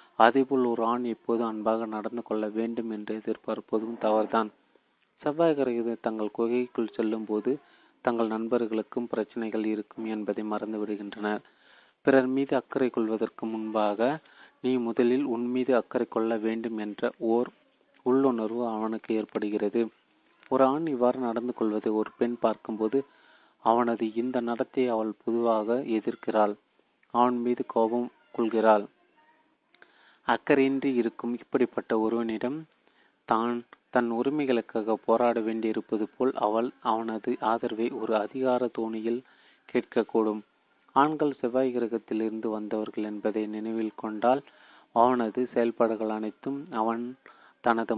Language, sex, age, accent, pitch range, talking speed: Tamil, male, 30-49, native, 110-125 Hz, 110 wpm